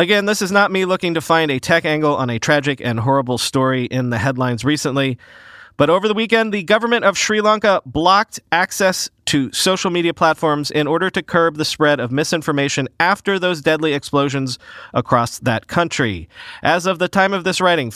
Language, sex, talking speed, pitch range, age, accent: English, male, 195 wpm, 135-180 Hz, 30-49, American